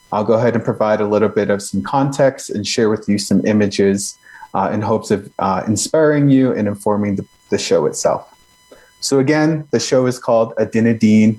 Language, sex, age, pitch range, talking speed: English, male, 30-49, 100-115 Hz, 195 wpm